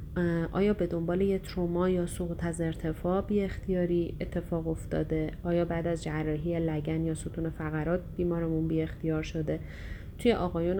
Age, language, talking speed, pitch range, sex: 30-49, Persian, 150 wpm, 160-190 Hz, female